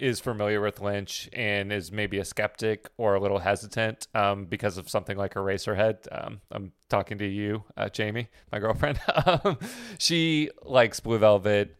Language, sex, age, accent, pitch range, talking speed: English, male, 30-49, American, 100-120 Hz, 165 wpm